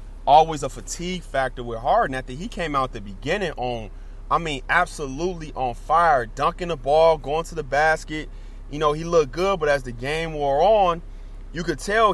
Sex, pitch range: male, 125-165 Hz